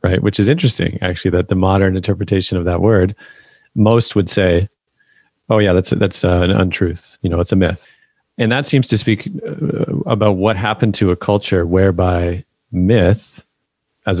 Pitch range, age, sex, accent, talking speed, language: 90-105 Hz, 30-49, male, American, 175 wpm, English